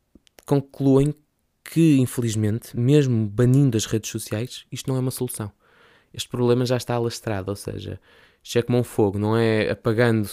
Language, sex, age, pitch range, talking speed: Portuguese, male, 20-39, 110-135 Hz, 165 wpm